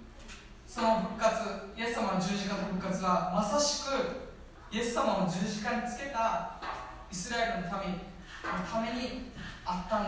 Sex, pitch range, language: female, 180-240 Hz, Japanese